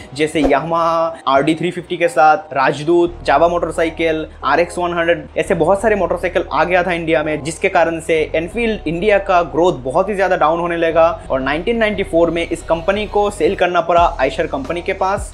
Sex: male